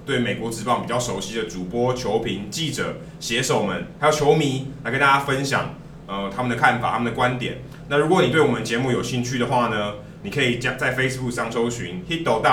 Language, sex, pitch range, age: Chinese, male, 115-145 Hz, 20-39